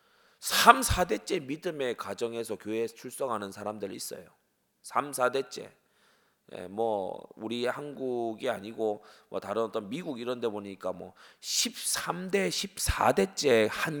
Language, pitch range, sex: Korean, 100-145 Hz, male